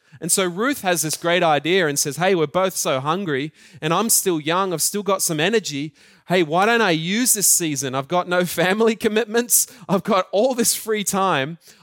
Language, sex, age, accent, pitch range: Japanese, male, 30-49, Australian, 150-210 Hz